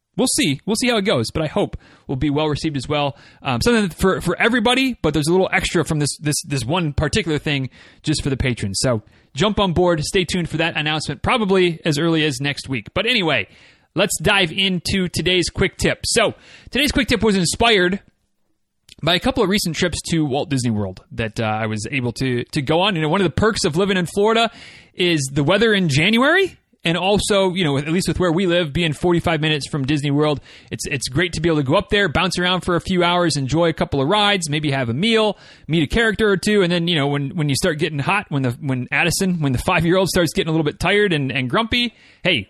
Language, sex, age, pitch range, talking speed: English, male, 30-49, 145-190 Hz, 245 wpm